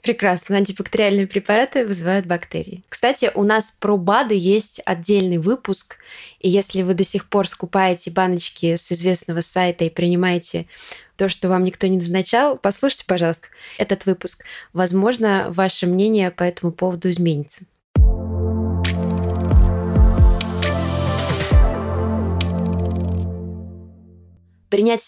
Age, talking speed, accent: 20-39, 105 wpm, native